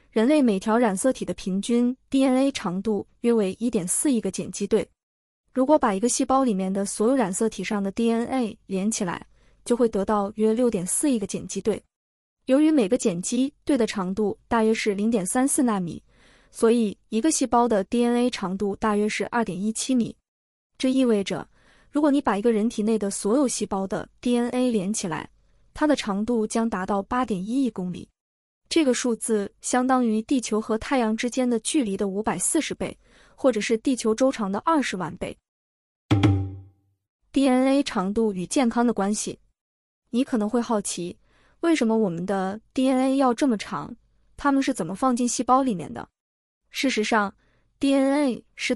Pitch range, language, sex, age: 200-260 Hz, Chinese, female, 20-39